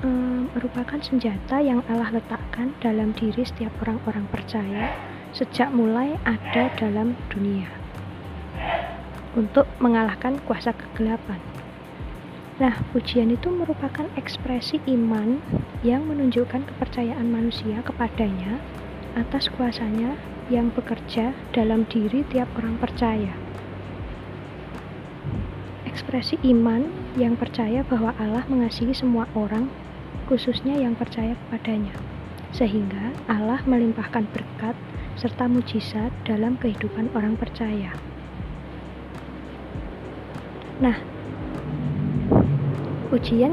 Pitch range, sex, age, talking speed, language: 215-250 Hz, female, 20-39, 90 wpm, Indonesian